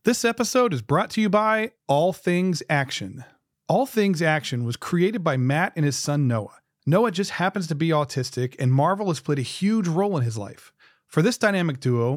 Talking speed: 200 wpm